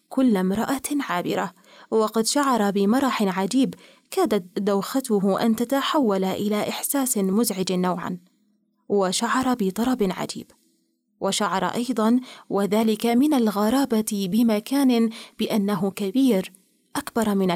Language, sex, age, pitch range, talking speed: Arabic, female, 30-49, 200-255 Hz, 95 wpm